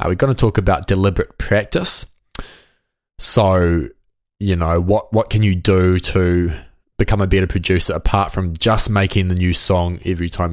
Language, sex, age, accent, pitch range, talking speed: English, male, 20-39, Australian, 90-115 Hz, 165 wpm